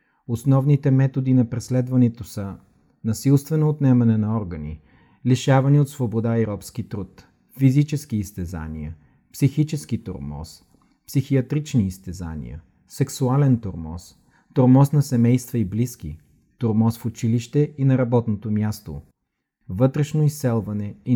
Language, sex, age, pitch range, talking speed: Bulgarian, male, 40-59, 105-140 Hz, 110 wpm